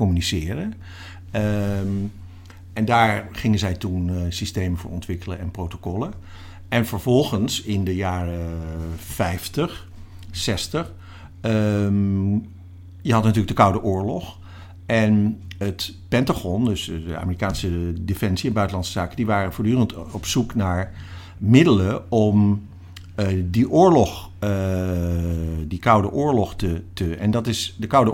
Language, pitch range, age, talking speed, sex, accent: Dutch, 90-110 Hz, 50-69, 125 wpm, male, Dutch